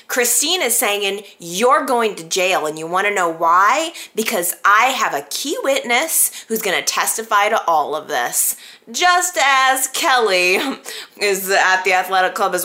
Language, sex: English, female